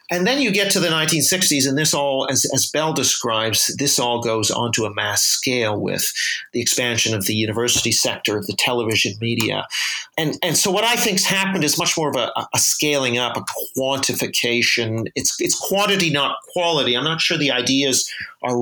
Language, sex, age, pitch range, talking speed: English, male, 40-59, 120-145 Hz, 195 wpm